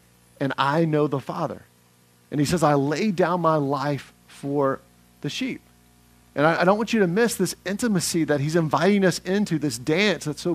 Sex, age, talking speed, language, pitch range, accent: male, 50-69, 200 wpm, English, 135-185 Hz, American